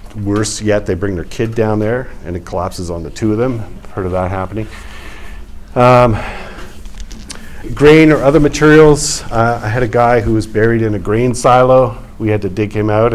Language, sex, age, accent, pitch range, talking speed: English, male, 50-69, American, 95-115 Hz, 200 wpm